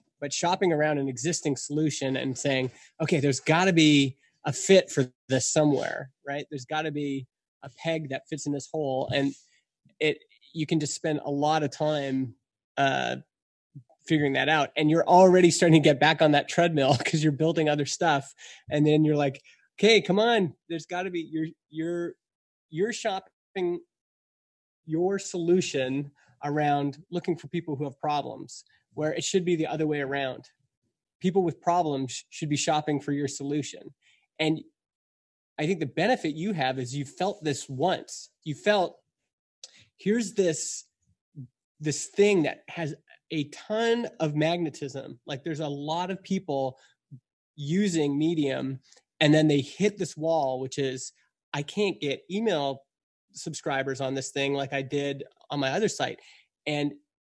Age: 20-39